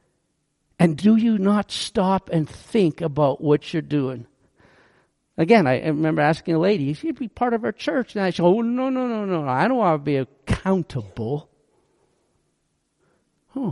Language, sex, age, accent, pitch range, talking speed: English, male, 50-69, American, 170-255 Hz, 170 wpm